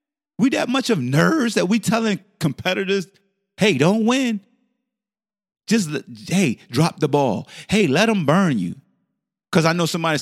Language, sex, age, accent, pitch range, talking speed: English, male, 30-49, American, 135-200 Hz, 155 wpm